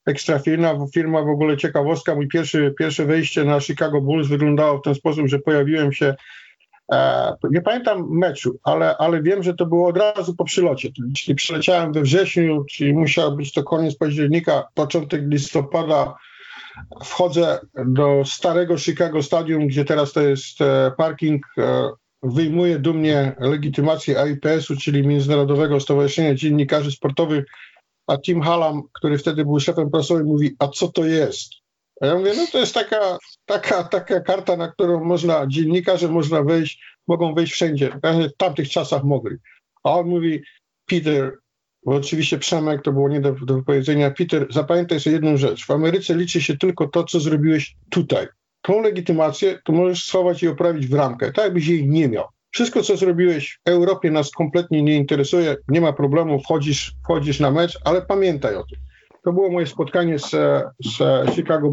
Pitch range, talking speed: 145-175 Hz, 165 wpm